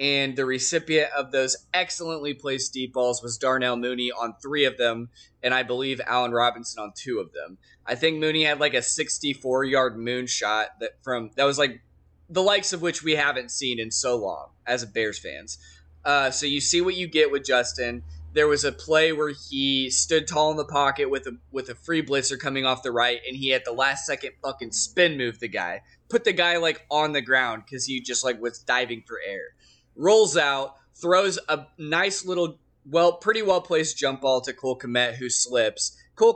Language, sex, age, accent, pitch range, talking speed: English, male, 20-39, American, 125-155 Hz, 210 wpm